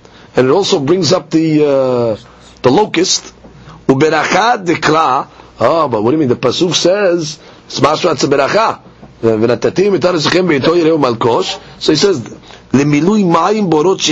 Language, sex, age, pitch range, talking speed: English, male, 40-59, 130-195 Hz, 115 wpm